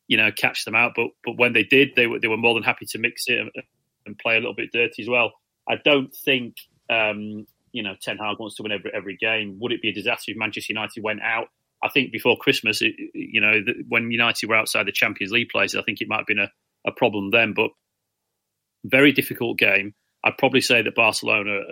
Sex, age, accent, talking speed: male, 30-49, British, 235 wpm